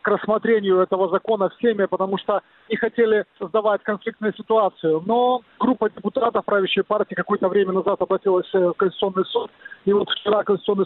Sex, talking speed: male, 155 wpm